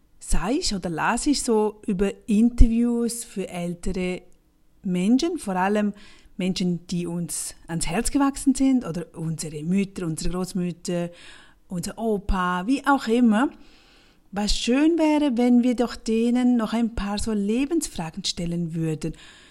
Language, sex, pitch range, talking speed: German, female, 180-245 Hz, 135 wpm